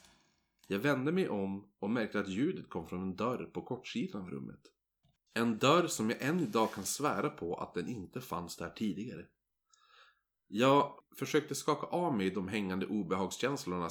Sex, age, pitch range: male, 30-49, 90-130 Hz